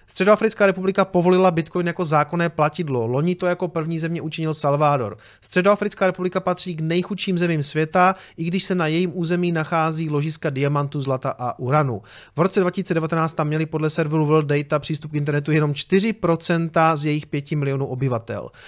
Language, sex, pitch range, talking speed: Czech, male, 150-175 Hz, 165 wpm